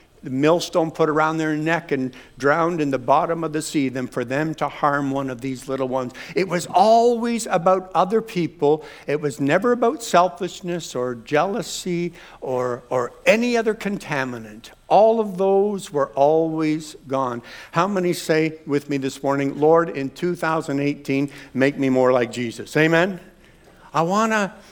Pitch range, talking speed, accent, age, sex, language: 140-185 Hz, 160 wpm, American, 60-79, male, English